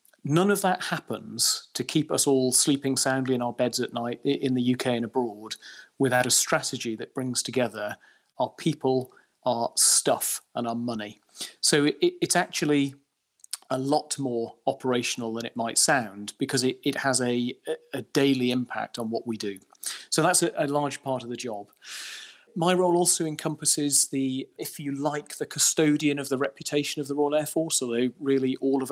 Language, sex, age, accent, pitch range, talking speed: English, male, 40-59, British, 125-145 Hz, 175 wpm